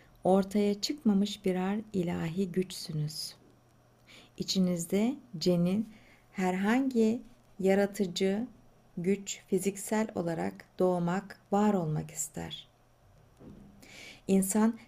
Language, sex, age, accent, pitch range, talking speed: Turkish, female, 60-79, native, 165-210 Hz, 70 wpm